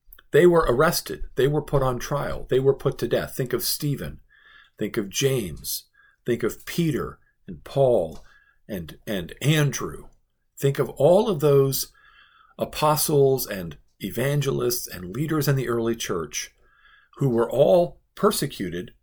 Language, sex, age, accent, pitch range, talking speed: English, male, 50-69, American, 120-180 Hz, 140 wpm